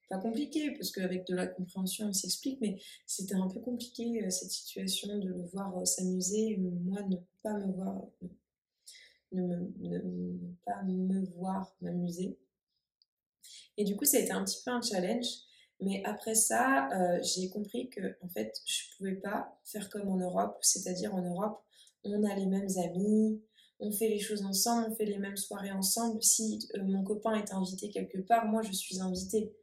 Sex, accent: female, French